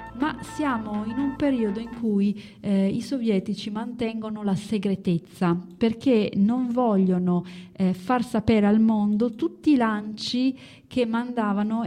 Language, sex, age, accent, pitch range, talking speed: German, female, 30-49, Italian, 185-240 Hz, 130 wpm